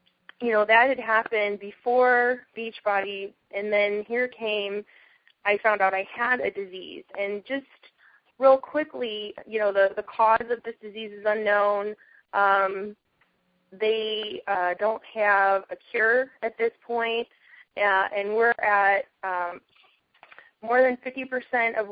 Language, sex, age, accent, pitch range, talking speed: English, female, 20-39, American, 195-235 Hz, 140 wpm